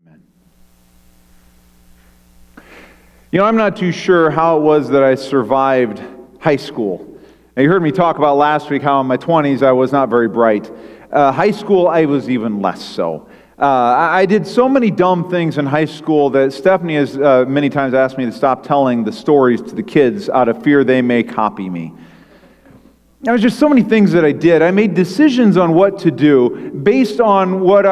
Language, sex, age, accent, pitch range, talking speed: English, male, 40-59, American, 125-185 Hz, 195 wpm